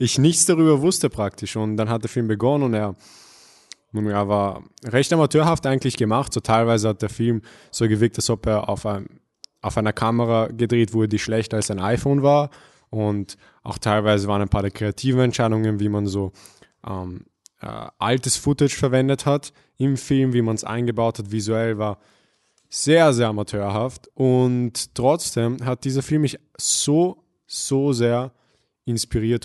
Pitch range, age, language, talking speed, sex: 110-130 Hz, 20-39, German, 165 wpm, male